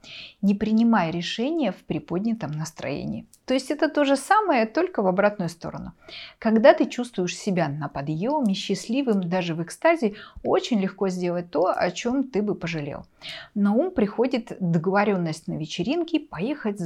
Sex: female